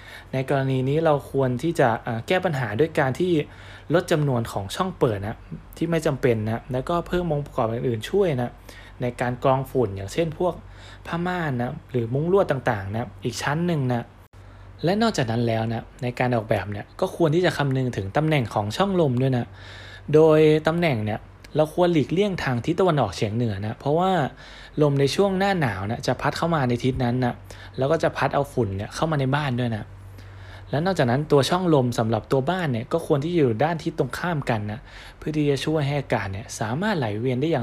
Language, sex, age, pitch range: Thai, male, 20-39, 110-155 Hz